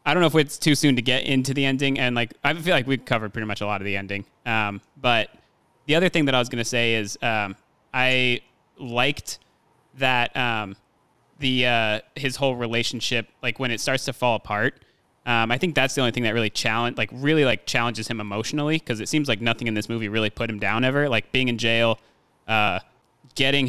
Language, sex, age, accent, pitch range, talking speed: English, male, 20-39, American, 110-130 Hz, 230 wpm